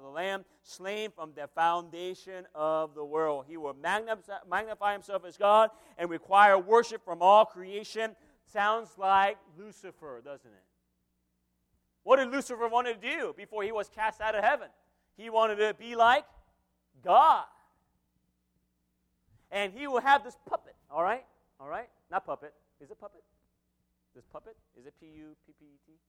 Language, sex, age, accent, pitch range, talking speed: English, male, 40-59, American, 145-225 Hz, 165 wpm